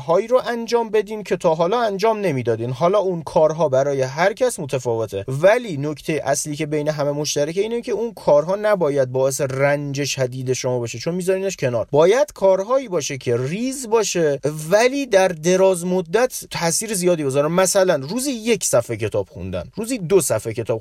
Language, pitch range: Persian, 135-200 Hz